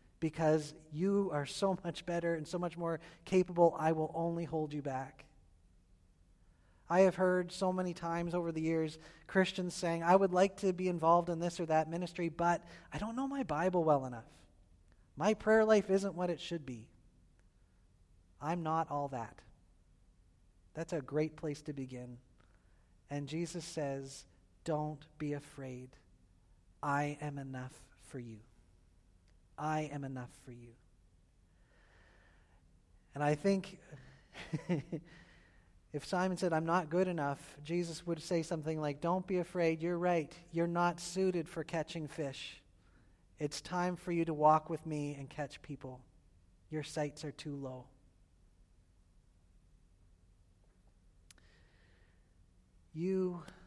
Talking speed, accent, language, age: 140 wpm, American, English, 40-59